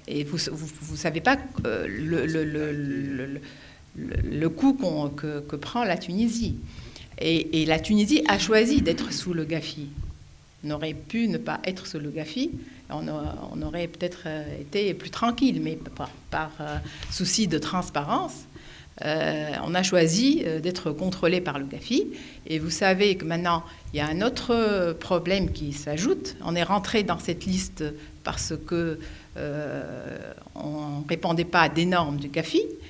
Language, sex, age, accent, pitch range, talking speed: French, female, 50-69, French, 150-190 Hz, 160 wpm